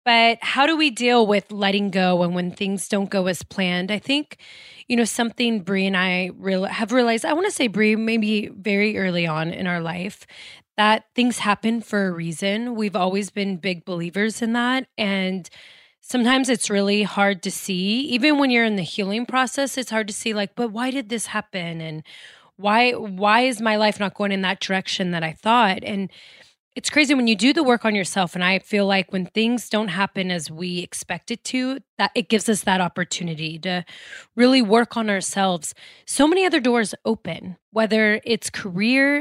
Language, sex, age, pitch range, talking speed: English, female, 20-39, 190-235 Hz, 200 wpm